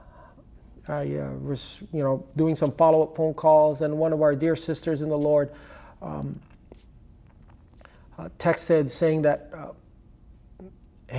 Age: 30-49